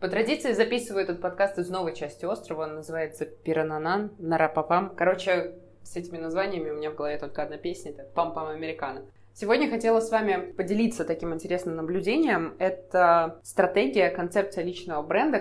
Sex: female